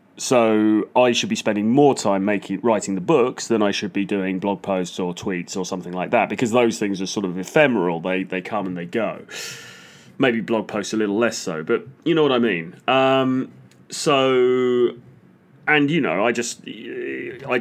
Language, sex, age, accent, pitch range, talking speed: English, male, 30-49, British, 95-130 Hz, 200 wpm